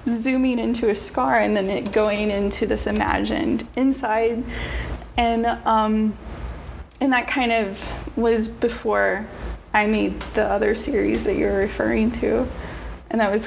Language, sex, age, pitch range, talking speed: English, female, 20-39, 210-240 Hz, 145 wpm